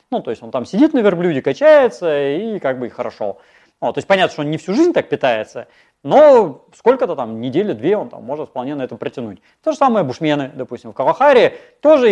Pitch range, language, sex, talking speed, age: 140-215 Hz, Russian, male, 215 wpm, 30-49